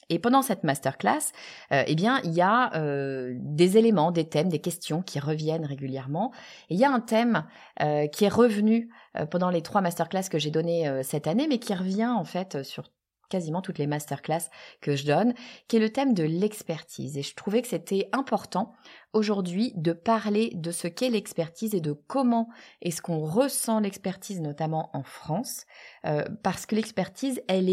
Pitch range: 160-225 Hz